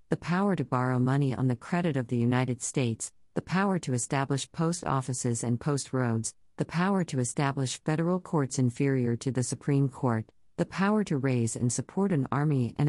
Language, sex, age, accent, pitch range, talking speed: English, female, 50-69, American, 130-160 Hz, 190 wpm